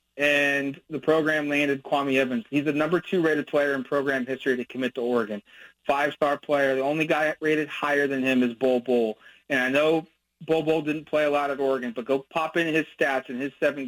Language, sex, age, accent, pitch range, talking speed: English, male, 30-49, American, 135-150 Hz, 220 wpm